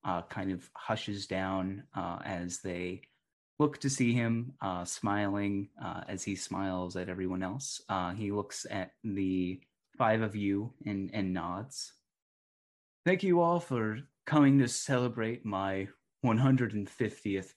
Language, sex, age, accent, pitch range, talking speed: English, male, 30-49, American, 95-135 Hz, 140 wpm